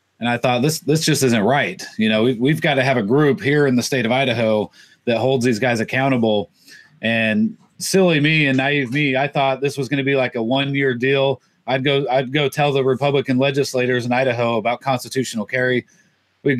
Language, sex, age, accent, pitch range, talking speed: English, male, 30-49, American, 115-140 Hz, 215 wpm